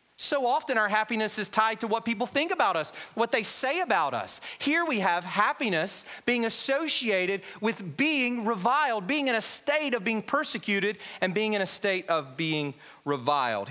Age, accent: 40-59, American